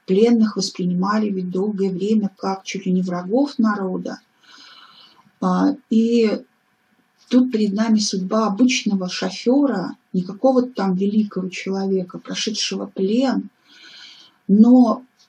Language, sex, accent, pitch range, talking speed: Russian, female, native, 200-250 Hz, 100 wpm